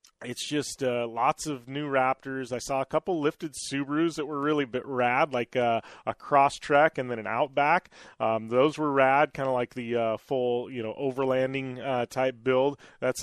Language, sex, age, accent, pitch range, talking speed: English, male, 30-49, American, 120-180 Hz, 205 wpm